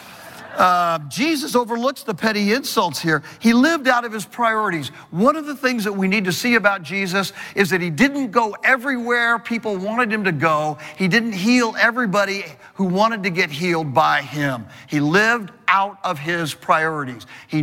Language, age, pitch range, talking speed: English, 50-69, 145-230 Hz, 180 wpm